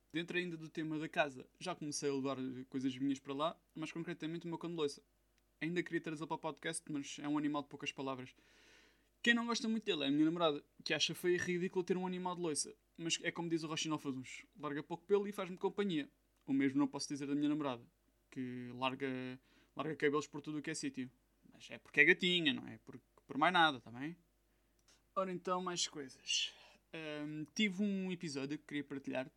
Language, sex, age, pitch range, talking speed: Portuguese, male, 20-39, 145-180 Hz, 215 wpm